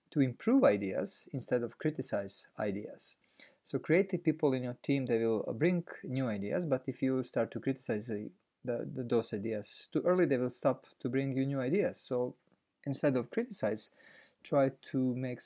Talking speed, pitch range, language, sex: 165 wpm, 115-140 Hz, English, male